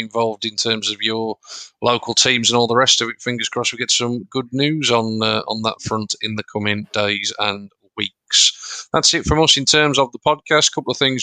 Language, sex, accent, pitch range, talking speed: English, male, British, 115-130 Hz, 235 wpm